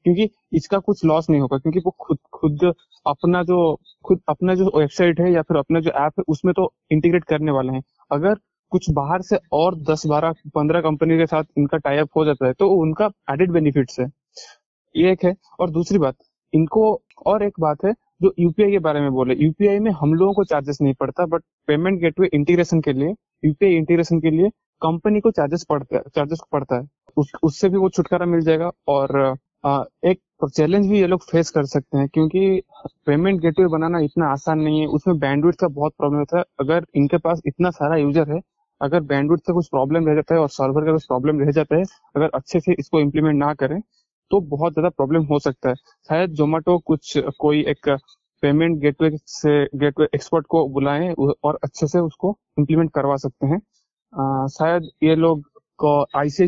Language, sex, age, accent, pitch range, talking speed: Hindi, male, 20-39, native, 145-180 Hz, 180 wpm